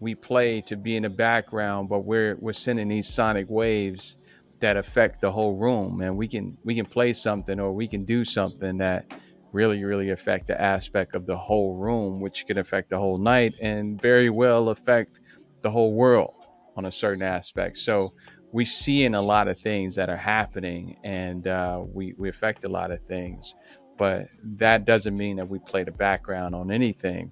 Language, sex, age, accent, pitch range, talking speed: English, male, 30-49, American, 95-115 Hz, 195 wpm